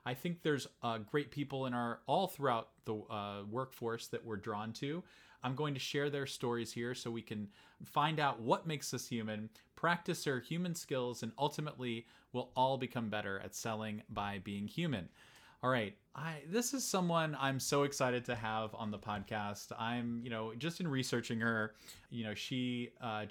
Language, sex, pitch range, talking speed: English, male, 105-135 Hz, 190 wpm